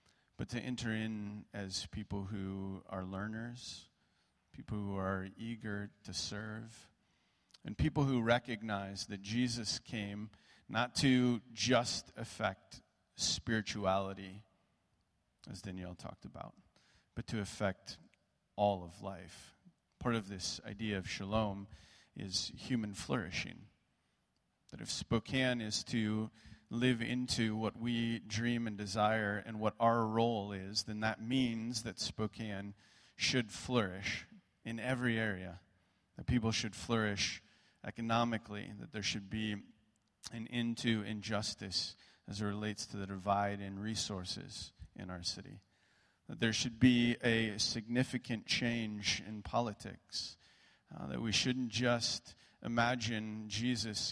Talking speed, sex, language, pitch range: 125 wpm, male, English, 100-115 Hz